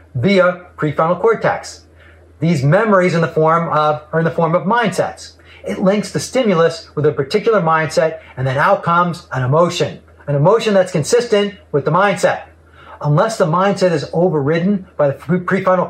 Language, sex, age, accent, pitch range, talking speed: English, male, 40-59, American, 150-200 Hz, 150 wpm